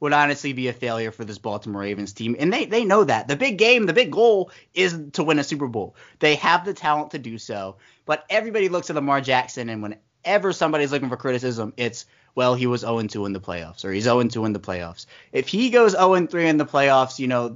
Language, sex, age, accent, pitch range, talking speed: English, male, 20-39, American, 120-165 Hz, 235 wpm